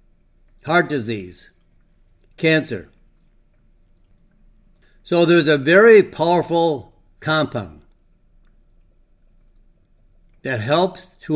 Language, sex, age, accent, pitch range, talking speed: English, male, 60-79, American, 110-160 Hz, 65 wpm